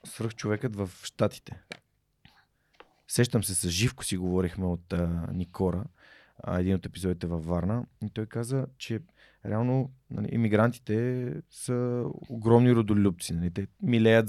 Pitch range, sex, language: 90-115 Hz, male, Bulgarian